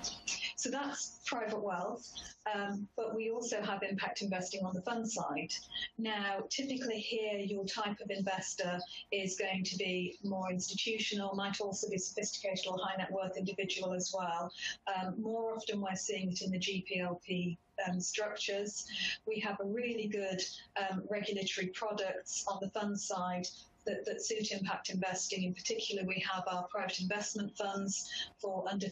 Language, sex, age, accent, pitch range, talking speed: English, female, 40-59, British, 190-215 Hz, 160 wpm